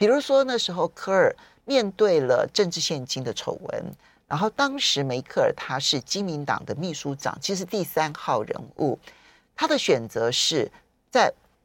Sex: male